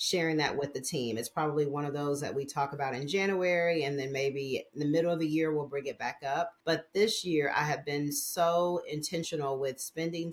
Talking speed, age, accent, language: 230 wpm, 40-59, American, English